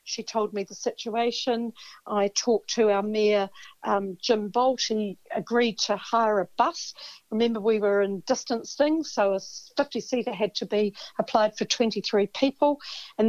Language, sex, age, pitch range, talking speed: English, female, 50-69, 205-240 Hz, 165 wpm